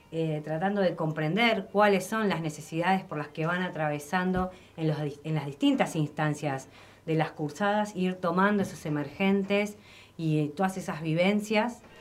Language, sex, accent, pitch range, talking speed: Spanish, female, Argentinian, 150-195 Hz, 155 wpm